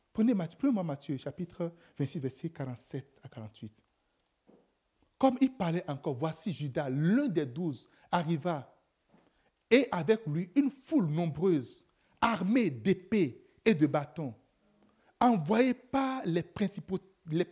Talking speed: 115 wpm